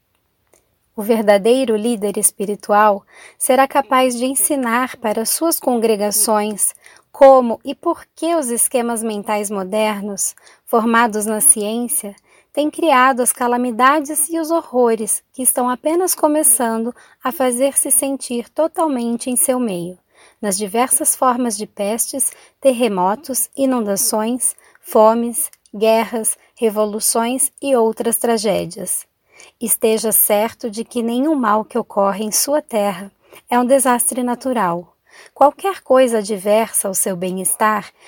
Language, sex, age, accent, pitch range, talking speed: Portuguese, female, 20-39, Brazilian, 210-260 Hz, 115 wpm